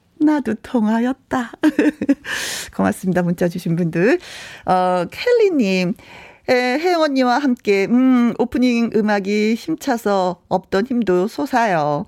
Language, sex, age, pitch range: Korean, female, 40-59, 195-265 Hz